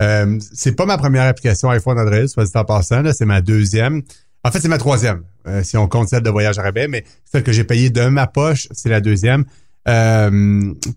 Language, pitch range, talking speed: French, 105-130 Hz, 225 wpm